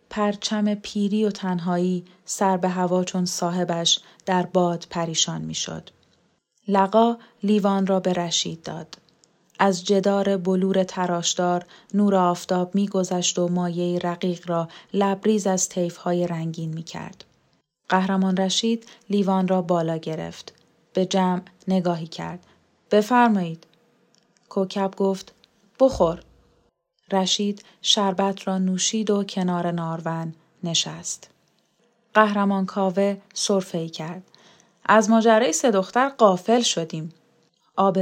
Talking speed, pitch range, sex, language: 105 wpm, 175-210 Hz, female, Persian